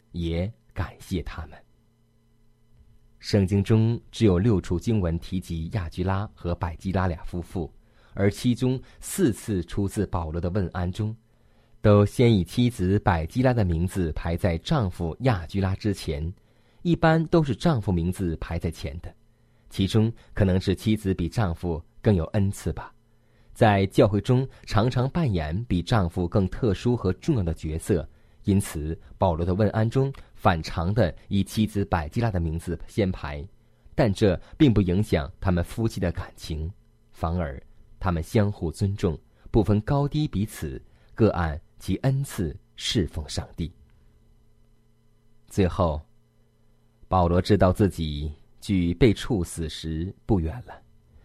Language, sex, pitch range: Chinese, male, 90-115 Hz